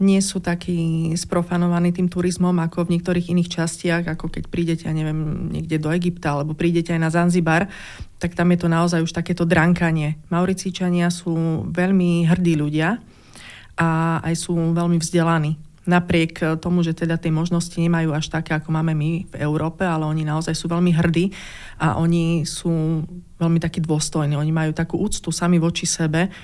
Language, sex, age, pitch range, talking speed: Slovak, female, 30-49, 160-175 Hz, 170 wpm